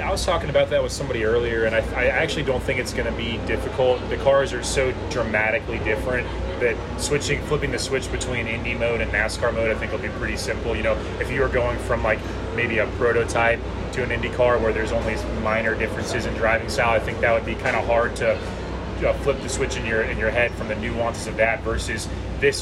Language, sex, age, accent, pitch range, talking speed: English, male, 30-49, American, 100-115 Hz, 245 wpm